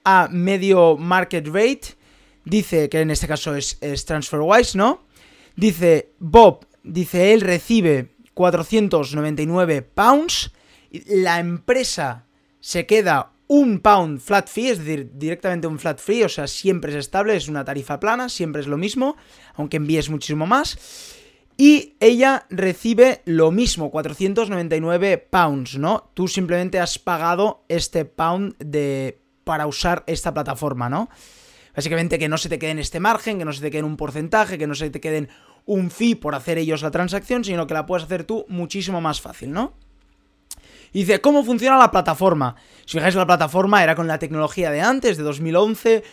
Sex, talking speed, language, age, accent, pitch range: male, 170 wpm, Spanish, 30-49, Spanish, 150-210 Hz